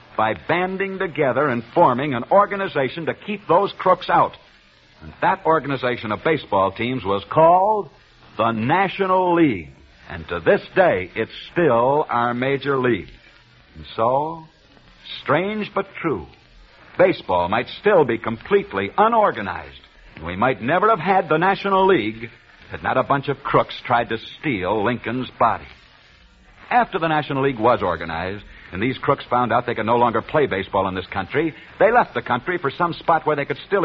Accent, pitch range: American, 115-175 Hz